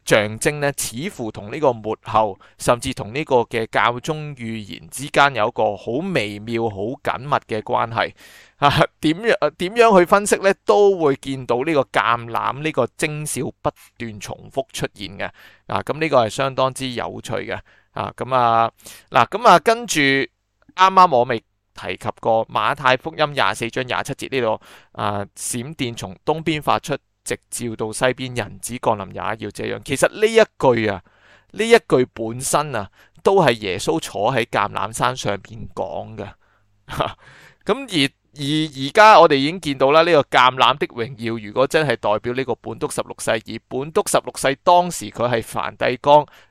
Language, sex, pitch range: Chinese, male, 110-150 Hz